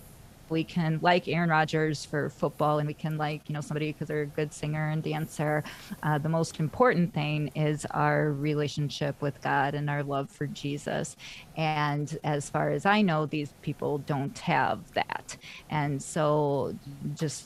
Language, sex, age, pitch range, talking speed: English, female, 30-49, 150-180 Hz, 170 wpm